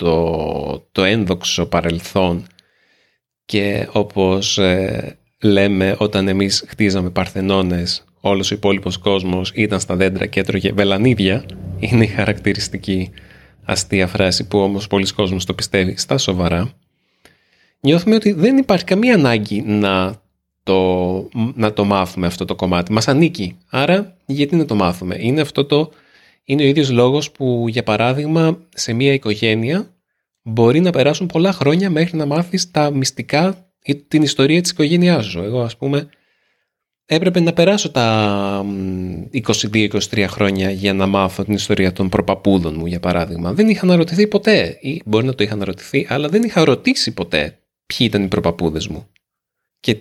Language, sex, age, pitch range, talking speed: Greek, male, 30-49, 95-145 Hz, 150 wpm